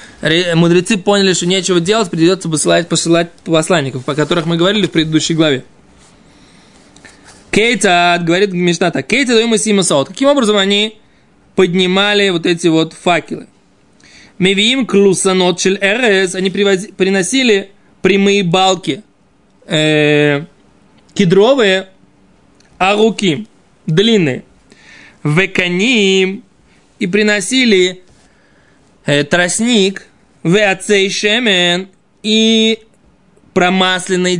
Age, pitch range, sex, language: 20-39, 170-200 Hz, male, Russian